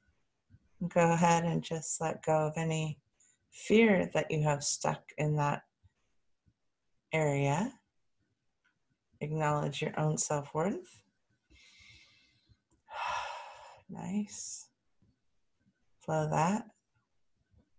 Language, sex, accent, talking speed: English, female, American, 80 wpm